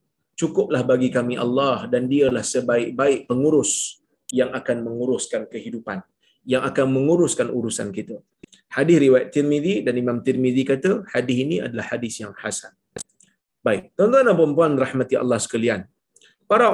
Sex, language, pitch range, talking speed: male, Malayalam, 130-200 Hz, 135 wpm